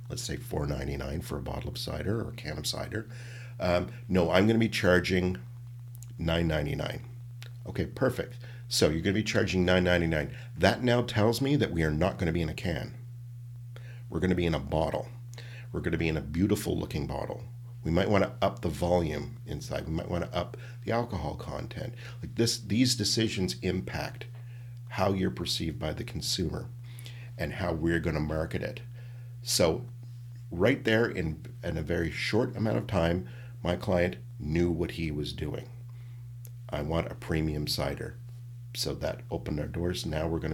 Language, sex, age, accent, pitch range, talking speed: English, male, 50-69, American, 85-120 Hz, 185 wpm